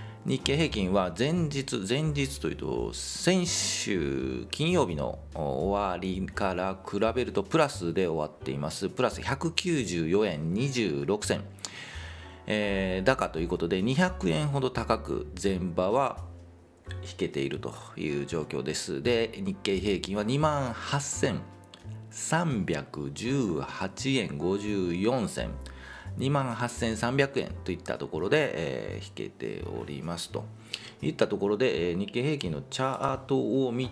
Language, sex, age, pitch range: Japanese, male, 40-59, 85-130 Hz